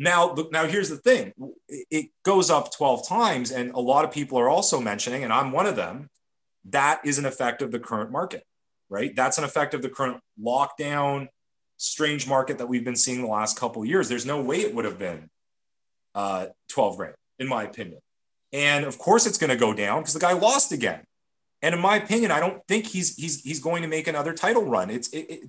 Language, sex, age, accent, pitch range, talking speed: English, male, 30-49, American, 125-175 Hz, 225 wpm